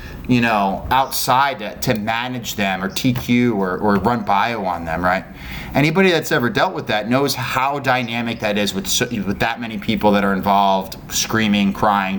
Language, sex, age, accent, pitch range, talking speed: English, male, 30-49, American, 100-130 Hz, 175 wpm